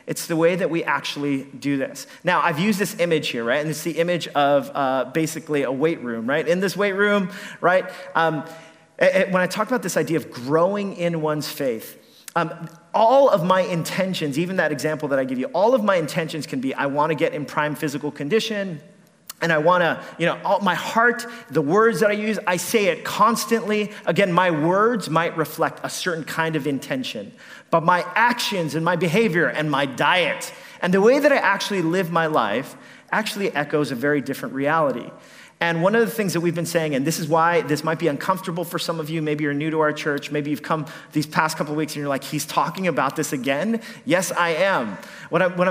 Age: 30-49